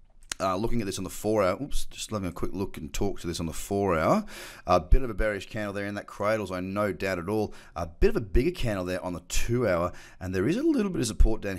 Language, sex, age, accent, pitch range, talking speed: English, male, 30-49, Australian, 90-110 Hz, 295 wpm